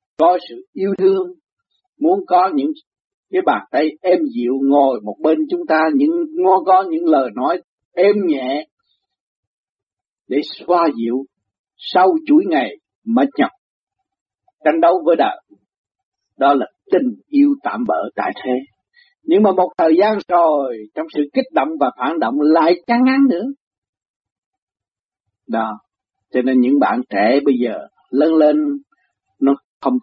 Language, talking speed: Vietnamese, 150 wpm